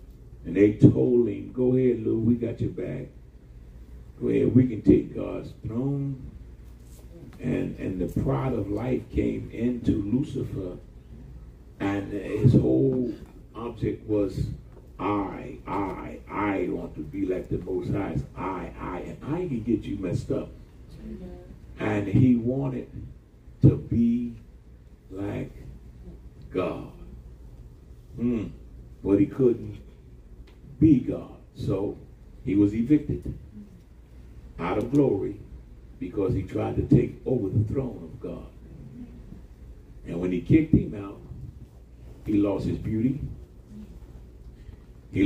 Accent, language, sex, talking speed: American, English, male, 120 wpm